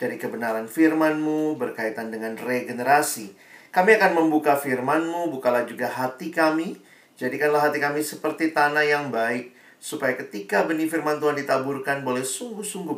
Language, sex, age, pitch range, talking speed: Indonesian, male, 40-59, 120-155 Hz, 135 wpm